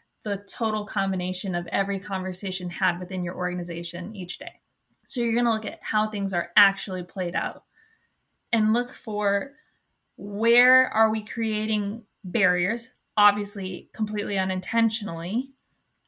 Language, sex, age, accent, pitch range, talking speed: English, female, 20-39, American, 195-230 Hz, 130 wpm